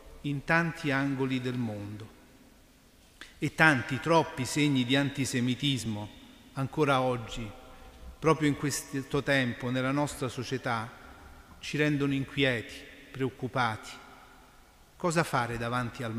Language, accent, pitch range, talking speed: Italian, native, 125-155 Hz, 105 wpm